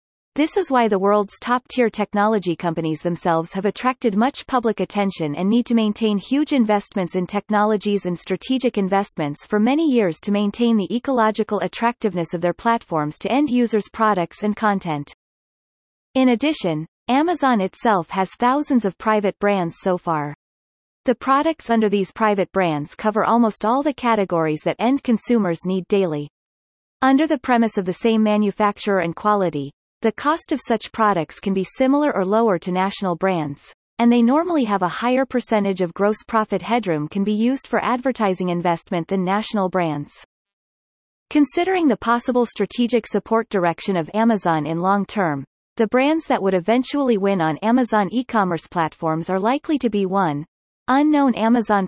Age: 30-49